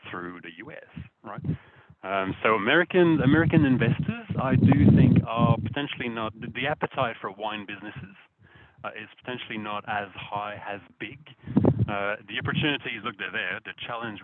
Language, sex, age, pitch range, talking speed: English, male, 30-49, 100-130 Hz, 150 wpm